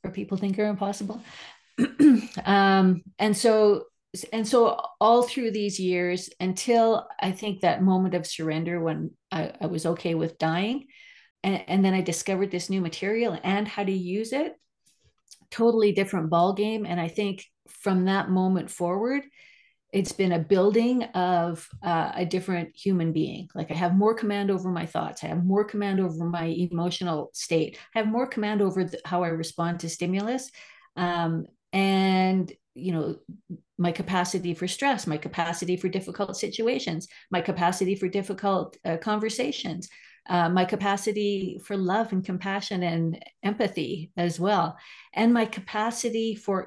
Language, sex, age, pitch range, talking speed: English, female, 40-59, 175-210 Hz, 155 wpm